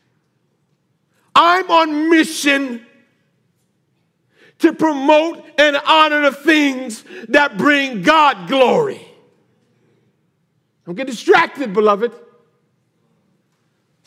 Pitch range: 160-235 Hz